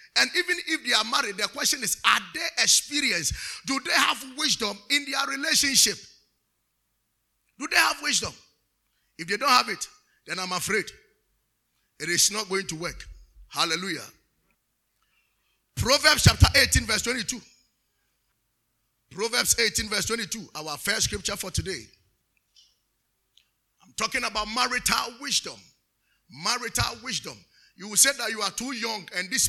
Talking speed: 140 wpm